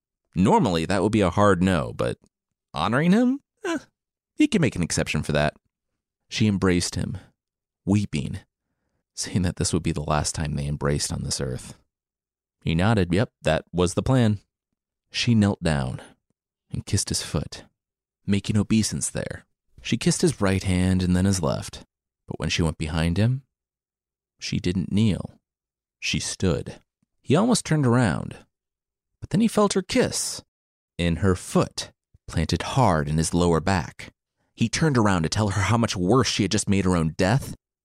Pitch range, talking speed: 80-110 Hz, 170 wpm